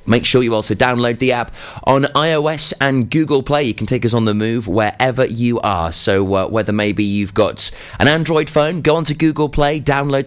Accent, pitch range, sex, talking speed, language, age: British, 105-140 Hz, male, 215 wpm, English, 30-49